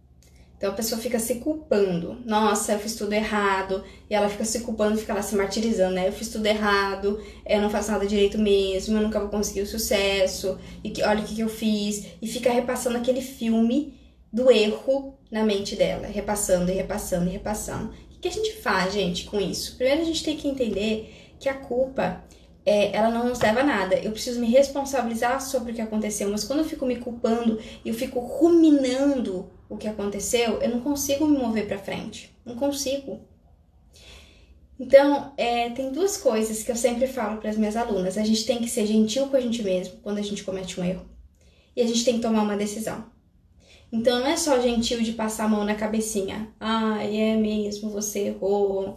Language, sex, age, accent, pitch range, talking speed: Portuguese, female, 10-29, Brazilian, 200-255 Hz, 200 wpm